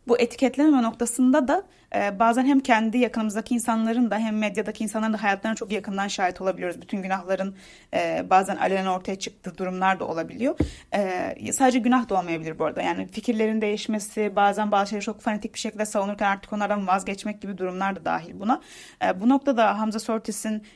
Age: 30-49